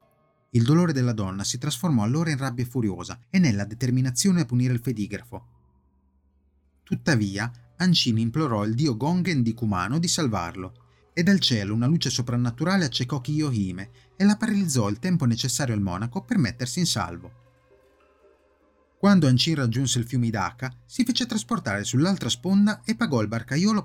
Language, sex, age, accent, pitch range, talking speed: Italian, male, 30-49, native, 110-155 Hz, 155 wpm